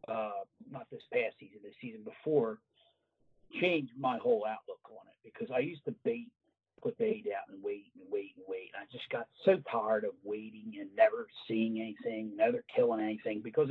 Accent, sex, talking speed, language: American, male, 190 wpm, English